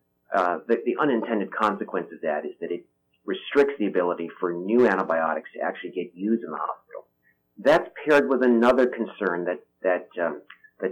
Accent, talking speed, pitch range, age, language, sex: American, 175 wpm, 90-120 Hz, 40-59, English, male